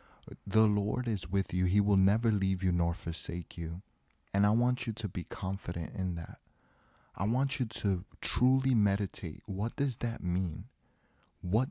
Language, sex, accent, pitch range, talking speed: English, male, American, 90-105 Hz, 170 wpm